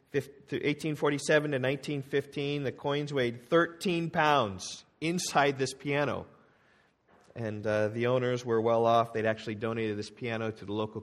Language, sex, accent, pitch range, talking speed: English, male, American, 115-155 Hz, 145 wpm